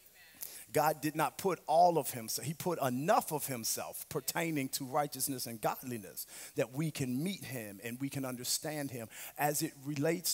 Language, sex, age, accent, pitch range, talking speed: English, male, 40-59, American, 120-150 Hz, 175 wpm